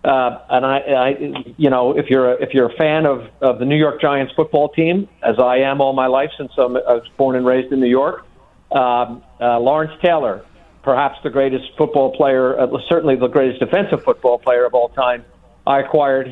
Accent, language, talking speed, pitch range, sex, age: American, English, 205 wpm, 125-140 Hz, male, 50-69